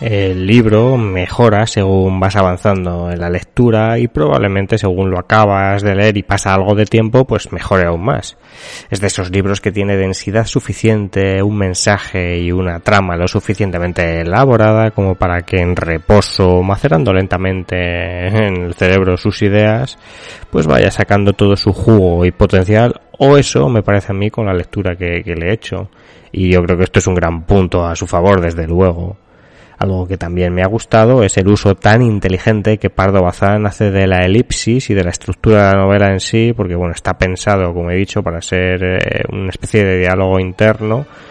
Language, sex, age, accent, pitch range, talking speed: Spanish, male, 20-39, Spanish, 90-110 Hz, 190 wpm